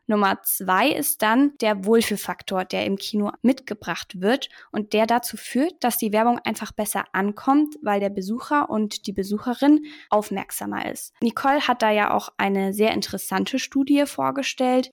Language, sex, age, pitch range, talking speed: German, female, 10-29, 200-245 Hz, 155 wpm